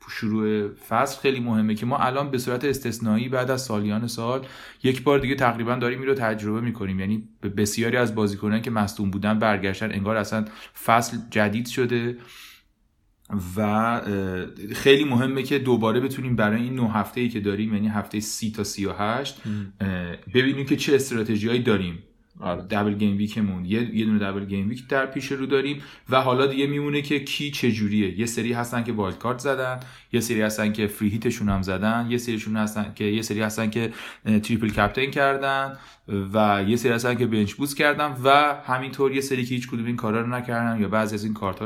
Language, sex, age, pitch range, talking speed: Persian, male, 30-49, 105-130 Hz, 185 wpm